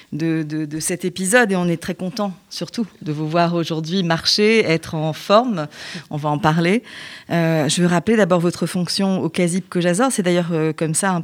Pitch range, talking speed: 165-205 Hz, 200 wpm